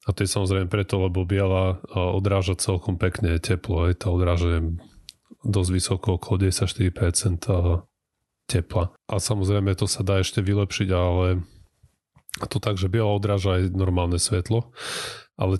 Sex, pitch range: male, 90-105 Hz